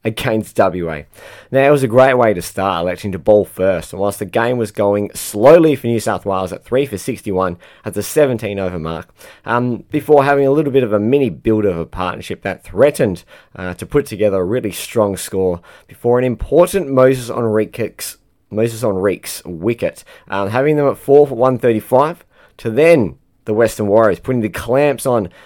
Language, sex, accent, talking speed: English, male, Australian, 200 wpm